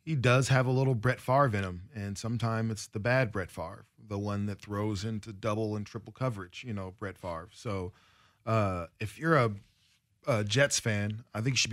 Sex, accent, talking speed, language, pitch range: male, American, 210 wpm, English, 100-120 Hz